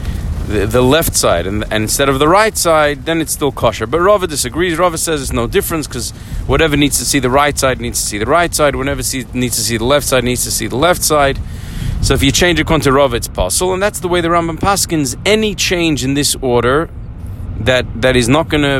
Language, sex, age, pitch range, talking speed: English, male, 40-59, 100-140 Hz, 245 wpm